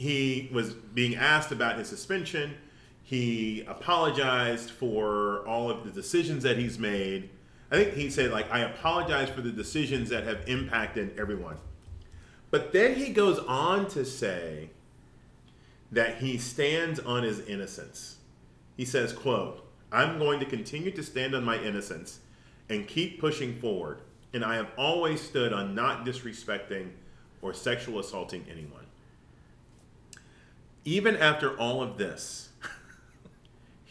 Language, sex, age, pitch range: English, male, 40-59, 110-155 Hz